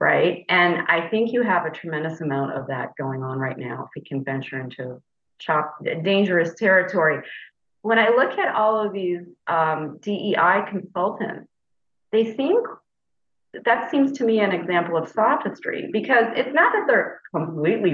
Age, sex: 40-59, female